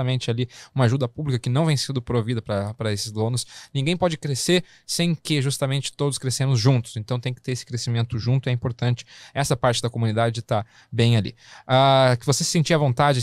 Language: English